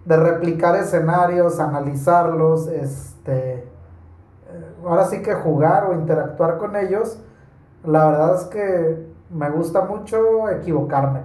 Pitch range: 150-185 Hz